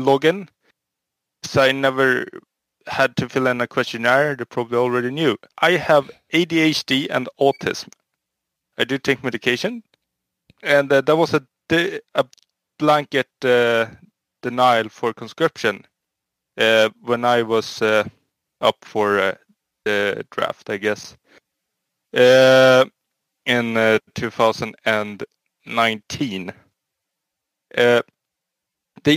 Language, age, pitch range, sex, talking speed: English, 20-39, 115-140 Hz, male, 105 wpm